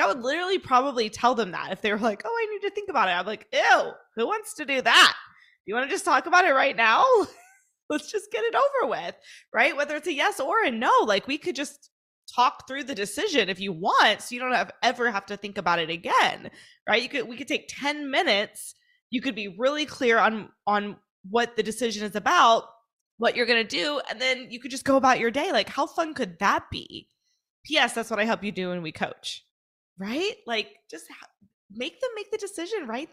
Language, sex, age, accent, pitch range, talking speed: English, female, 20-39, American, 220-320 Hz, 235 wpm